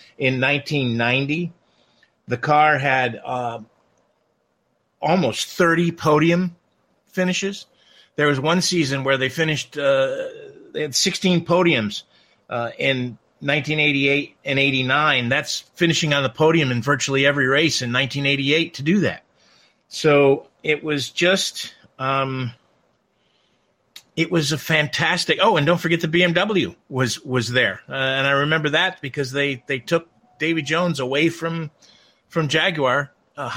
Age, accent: 50-69, American